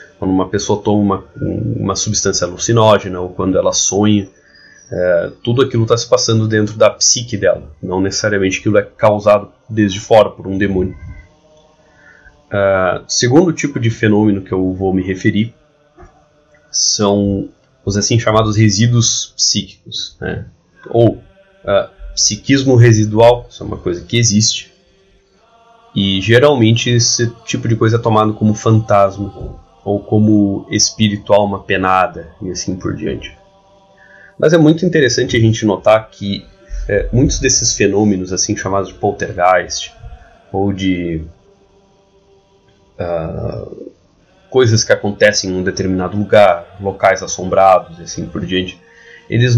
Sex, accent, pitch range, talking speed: male, Brazilian, 100-130 Hz, 130 wpm